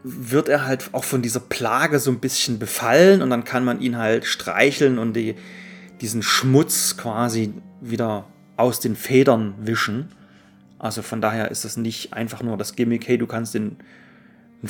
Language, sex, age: German, male, 30-49